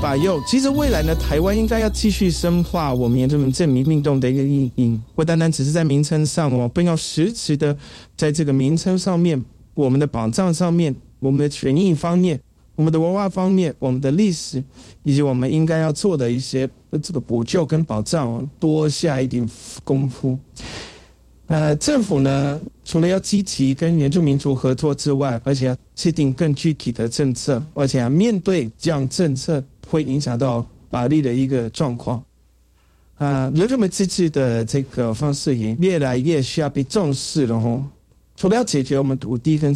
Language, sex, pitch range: Chinese, male, 125-165 Hz